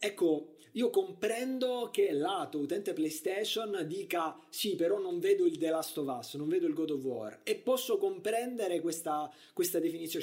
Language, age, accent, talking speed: Italian, 30-49, native, 170 wpm